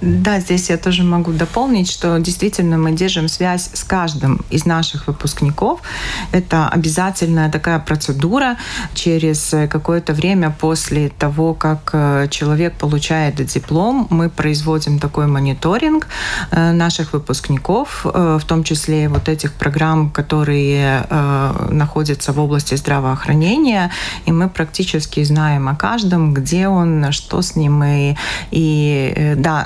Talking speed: 120 wpm